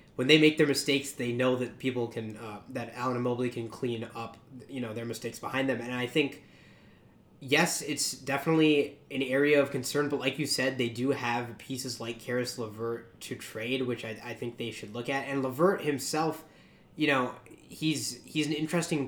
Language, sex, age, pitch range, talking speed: English, male, 20-39, 120-145 Hz, 200 wpm